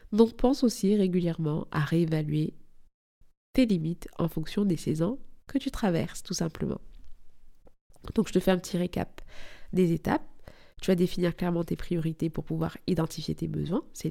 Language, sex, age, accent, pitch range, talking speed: French, female, 20-39, French, 160-205 Hz, 160 wpm